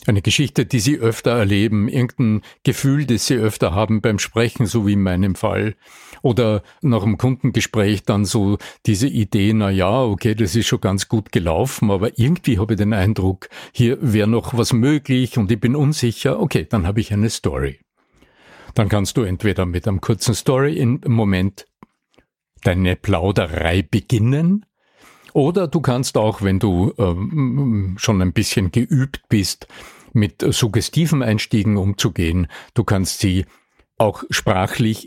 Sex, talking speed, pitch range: male, 155 wpm, 100-120 Hz